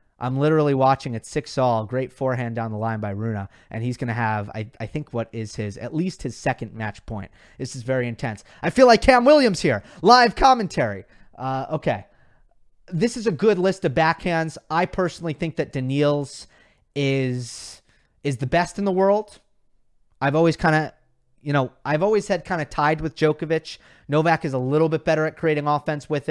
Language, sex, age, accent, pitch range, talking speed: English, male, 30-49, American, 125-160 Hz, 195 wpm